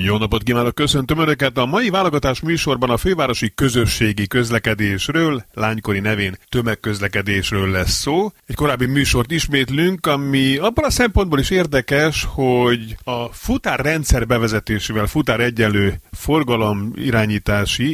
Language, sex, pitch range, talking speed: Hungarian, male, 100-130 Hz, 115 wpm